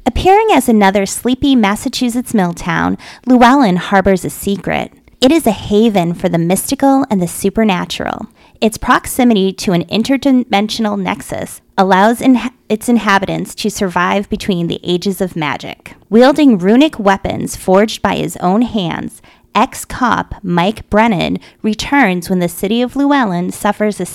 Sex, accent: female, American